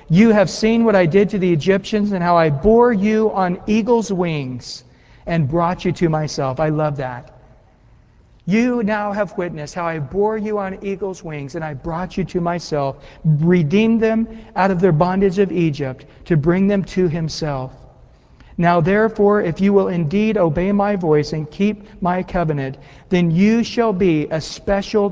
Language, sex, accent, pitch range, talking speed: English, male, American, 150-200 Hz, 175 wpm